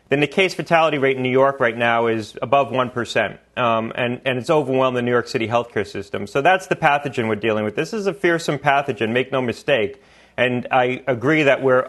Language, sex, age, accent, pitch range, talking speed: English, male, 30-49, American, 115-140 Hz, 220 wpm